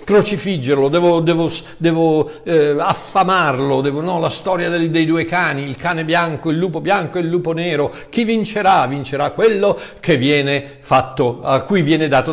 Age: 60-79